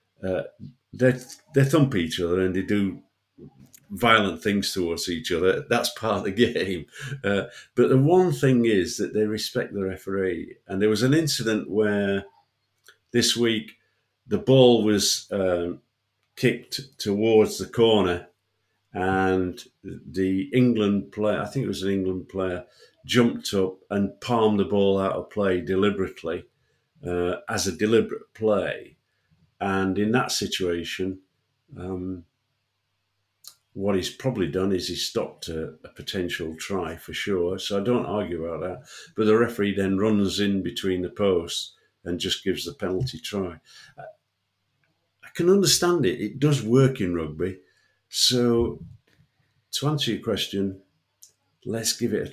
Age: 50-69